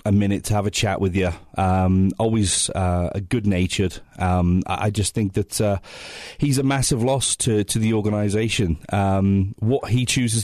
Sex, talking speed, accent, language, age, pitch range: male, 185 wpm, British, English, 30-49, 95-110 Hz